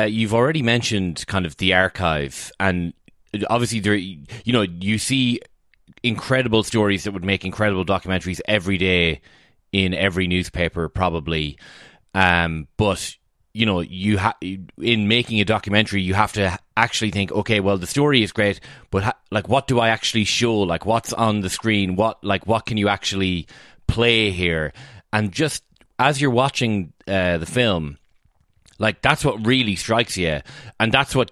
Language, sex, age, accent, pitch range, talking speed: English, male, 20-39, Irish, 95-115 Hz, 170 wpm